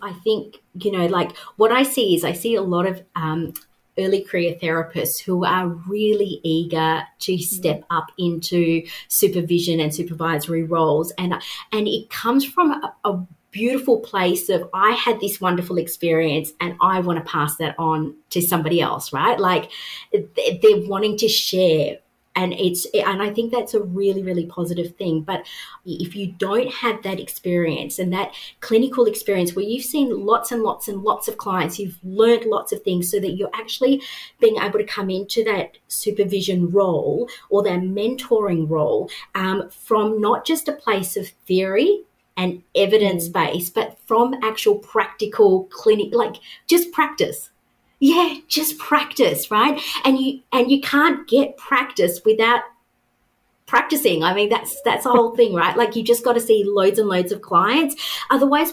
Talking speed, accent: 170 wpm, Australian